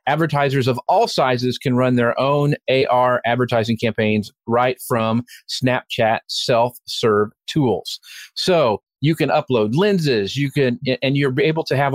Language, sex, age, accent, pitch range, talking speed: English, male, 40-59, American, 115-140 Hz, 140 wpm